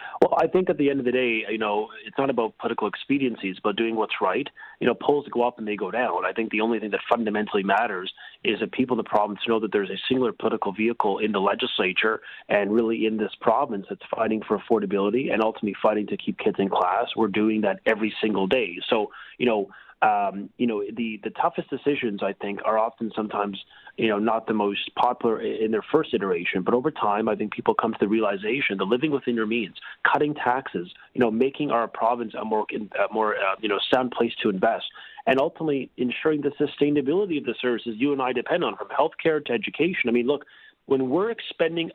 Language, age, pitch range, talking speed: English, 30-49, 110-145 Hz, 225 wpm